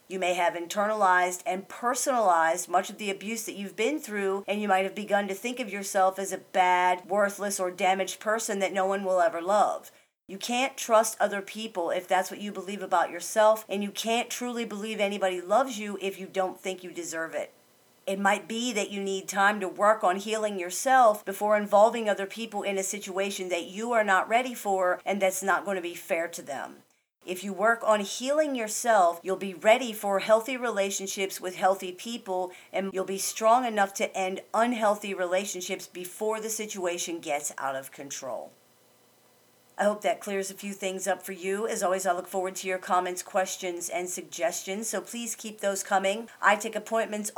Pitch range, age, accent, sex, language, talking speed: 180-210 Hz, 40-59, American, female, English, 200 wpm